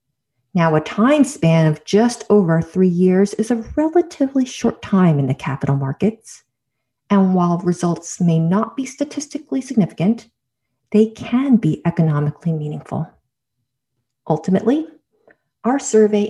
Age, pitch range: 40-59, 150-210 Hz